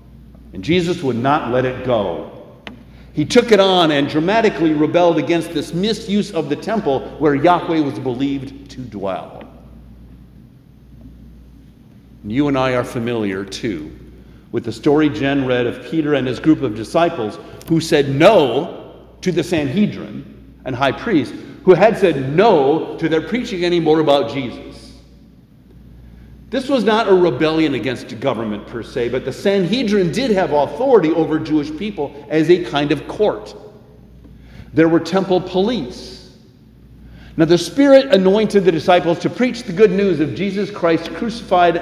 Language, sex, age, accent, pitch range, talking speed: English, male, 50-69, American, 130-180 Hz, 150 wpm